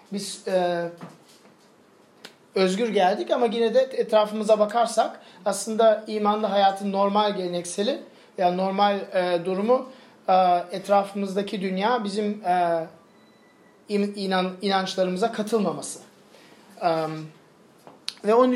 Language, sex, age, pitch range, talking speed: Turkish, male, 40-59, 185-230 Hz, 100 wpm